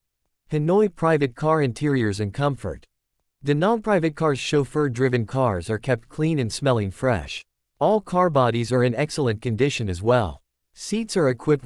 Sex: male